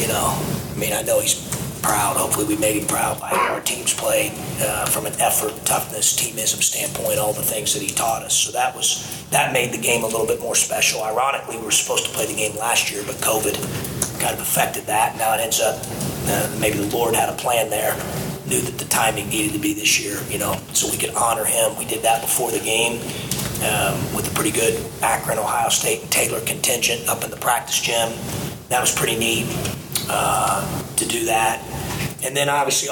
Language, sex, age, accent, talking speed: English, male, 30-49, American, 220 wpm